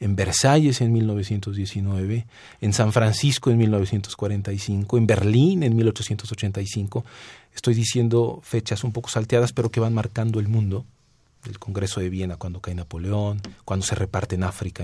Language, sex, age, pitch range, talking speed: Spanish, male, 40-59, 105-130 Hz, 150 wpm